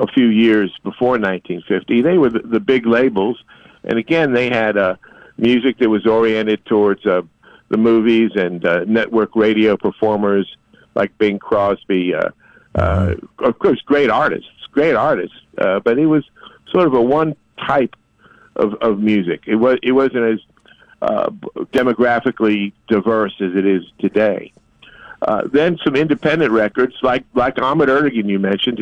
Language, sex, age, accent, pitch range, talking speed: English, male, 50-69, American, 105-120 Hz, 160 wpm